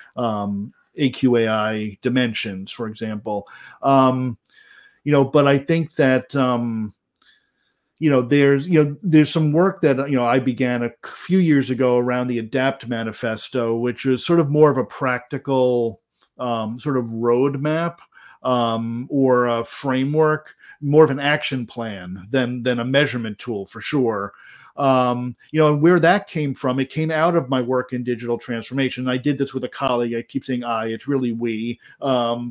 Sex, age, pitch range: male, 40-59, 120-145 Hz